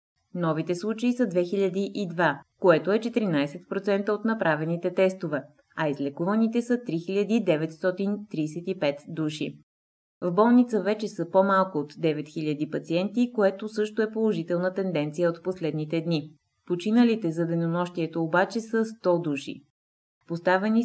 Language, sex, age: Bulgarian, female, 20-39